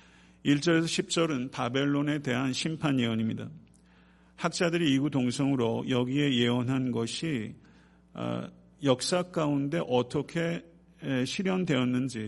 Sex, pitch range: male, 120-150 Hz